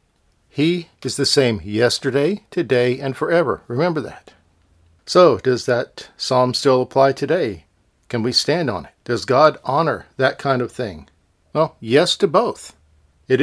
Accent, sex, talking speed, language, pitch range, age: American, male, 150 wpm, English, 110-140 Hz, 50-69